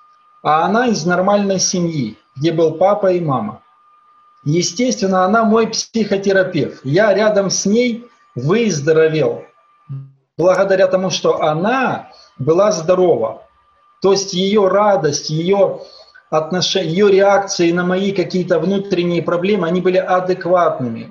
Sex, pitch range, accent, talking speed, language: male, 160-200 Hz, native, 115 wpm, Ukrainian